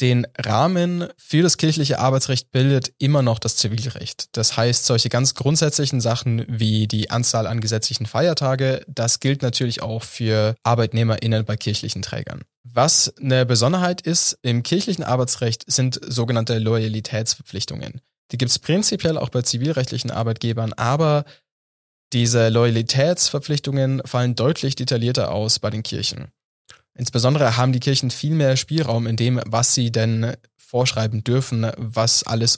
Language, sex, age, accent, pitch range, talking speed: German, male, 20-39, German, 115-135 Hz, 140 wpm